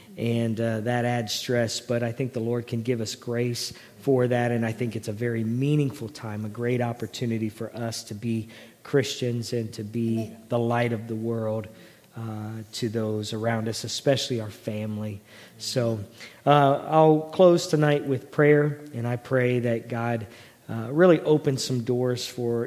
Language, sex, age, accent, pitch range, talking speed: English, male, 40-59, American, 115-130 Hz, 175 wpm